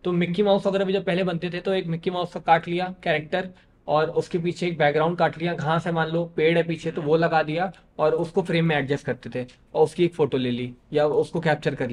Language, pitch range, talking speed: Hindi, 150-175 Hz, 260 wpm